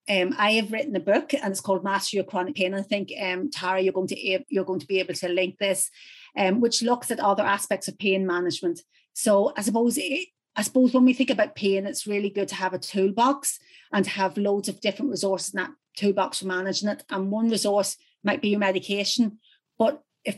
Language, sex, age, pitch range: English, female, 30-49, 190-220 Hz